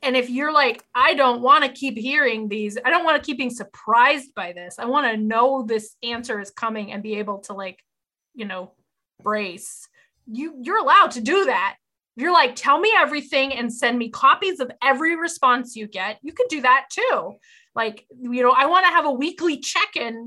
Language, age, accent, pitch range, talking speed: English, 20-39, American, 220-295 Hz, 205 wpm